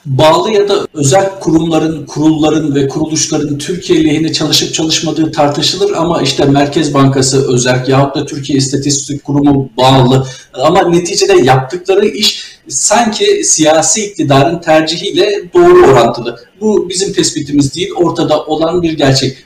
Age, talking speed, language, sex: 50-69, 130 wpm, Turkish, male